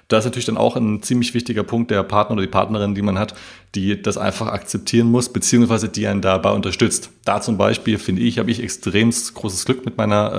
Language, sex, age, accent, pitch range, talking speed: German, male, 30-49, German, 95-110 Hz, 225 wpm